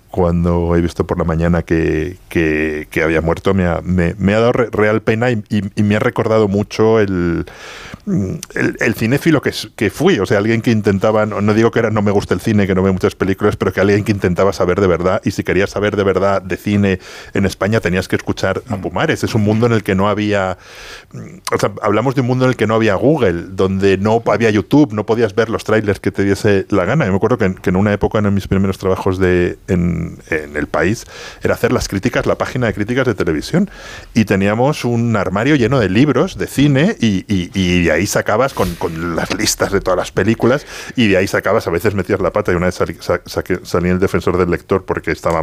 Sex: male